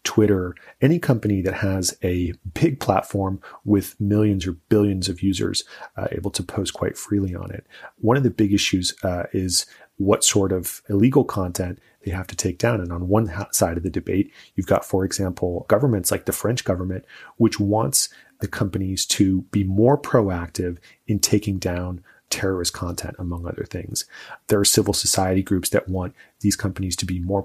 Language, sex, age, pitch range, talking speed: English, male, 30-49, 95-110 Hz, 180 wpm